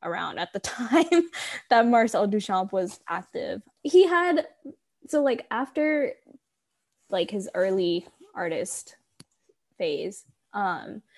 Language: English